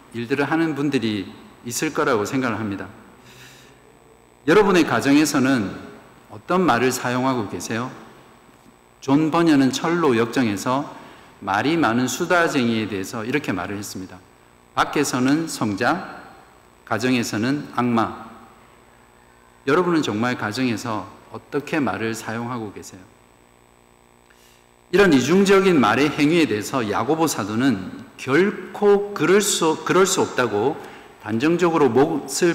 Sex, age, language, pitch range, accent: male, 50-69, Korean, 105-160 Hz, native